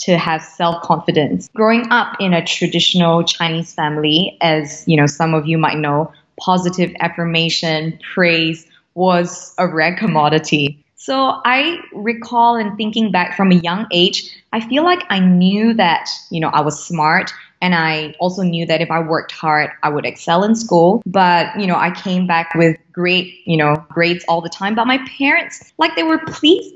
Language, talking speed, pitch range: English, 185 wpm, 160-190 Hz